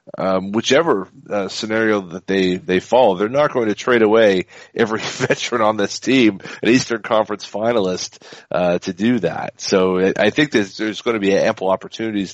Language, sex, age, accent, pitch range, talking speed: English, male, 40-59, American, 95-125 Hz, 180 wpm